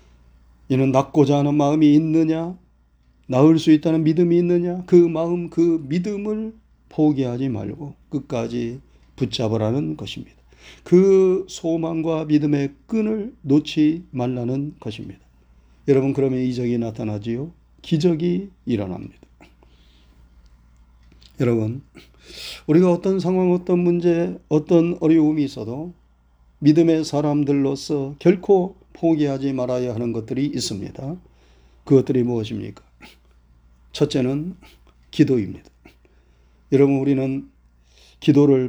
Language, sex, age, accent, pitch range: Korean, male, 40-59, native, 100-170 Hz